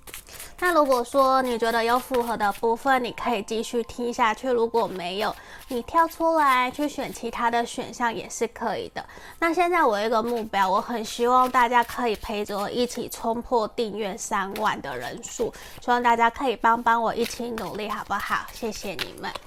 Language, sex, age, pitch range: Chinese, female, 20-39, 225-265 Hz